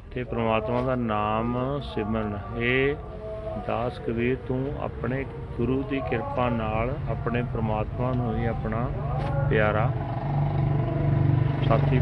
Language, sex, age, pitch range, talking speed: Punjabi, male, 40-59, 110-125 Hz, 105 wpm